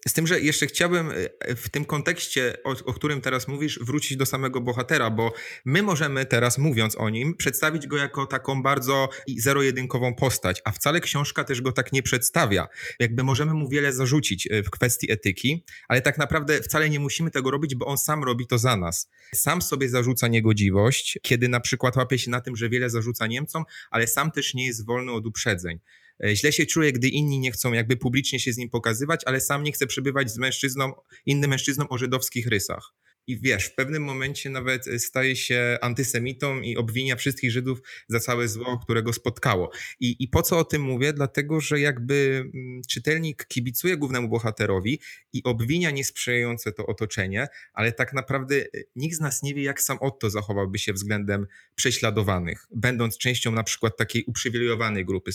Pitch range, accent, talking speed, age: 120-140 Hz, native, 185 wpm, 30-49